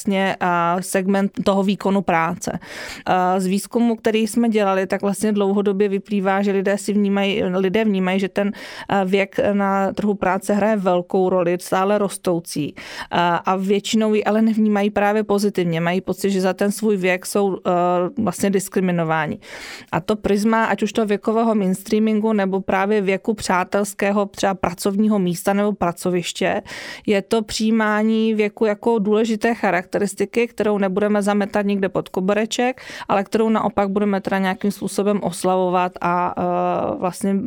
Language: English